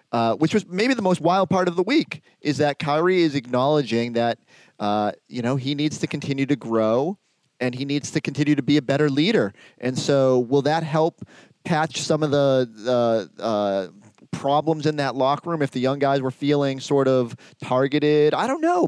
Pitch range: 120-150 Hz